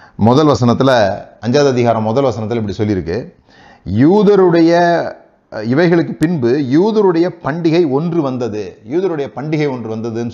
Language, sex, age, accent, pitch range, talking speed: Tamil, male, 30-49, native, 110-145 Hz, 110 wpm